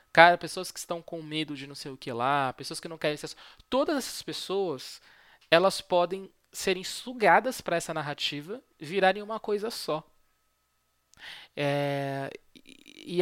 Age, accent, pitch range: 20-39, Brazilian, 155-210 Hz